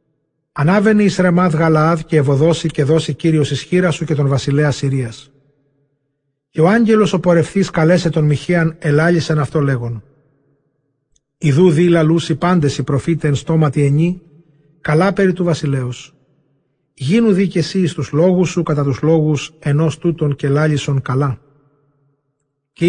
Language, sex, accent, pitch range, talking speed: Greek, male, native, 145-170 Hz, 140 wpm